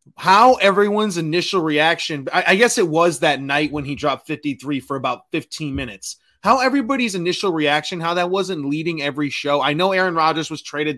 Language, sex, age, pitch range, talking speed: English, male, 20-39, 135-185 Hz, 185 wpm